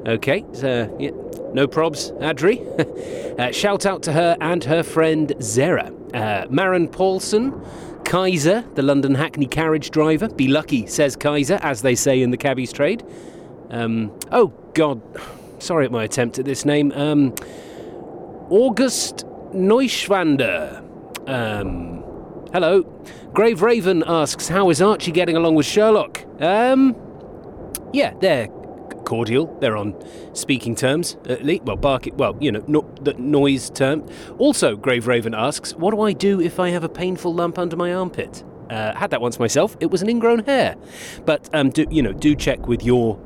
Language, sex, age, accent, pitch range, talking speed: English, male, 30-49, British, 135-210 Hz, 160 wpm